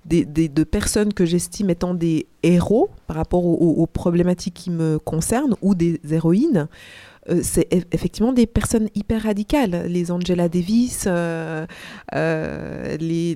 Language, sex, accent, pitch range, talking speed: French, female, French, 170-210 Hz, 155 wpm